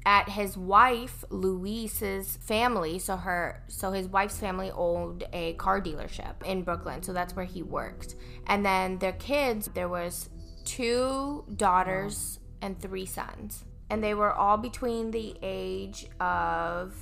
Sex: female